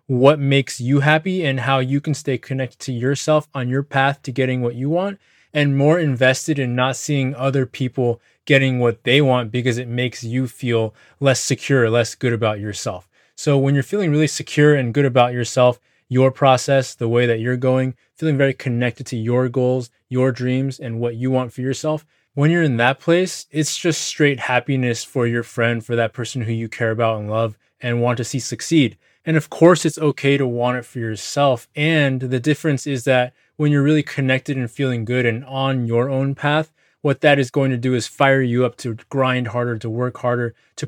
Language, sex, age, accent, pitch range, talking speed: English, male, 20-39, American, 125-145 Hz, 210 wpm